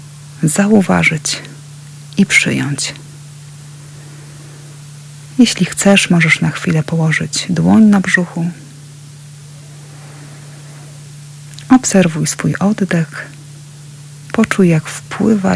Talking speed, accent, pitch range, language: 70 wpm, native, 145-170 Hz, Polish